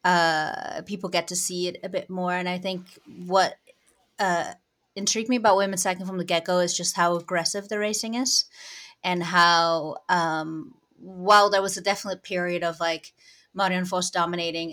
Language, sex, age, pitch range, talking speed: English, female, 20-39, 170-190 Hz, 180 wpm